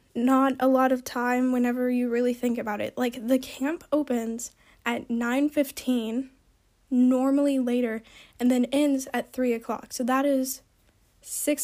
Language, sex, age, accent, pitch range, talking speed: English, female, 10-29, American, 245-275 Hz, 155 wpm